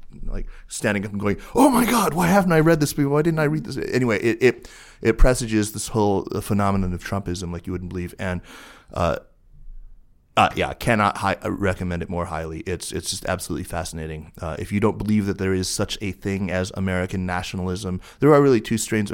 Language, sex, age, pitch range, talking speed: English, male, 30-49, 90-105 Hz, 210 wpm